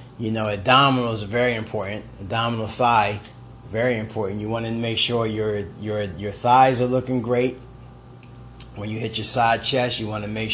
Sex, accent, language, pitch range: male, American, English, 110-125 Hz